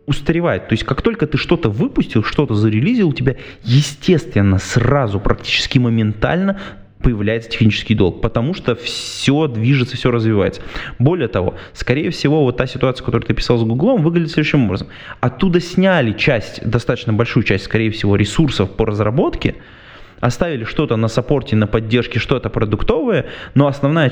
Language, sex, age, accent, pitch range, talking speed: Russian, male, 20-39, native, 110-140 Hz, 150 wpm